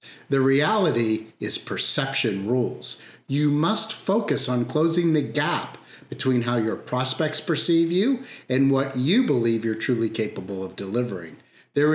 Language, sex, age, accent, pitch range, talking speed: English, male, 50-69, American, 125-170 Hz, 140 wpm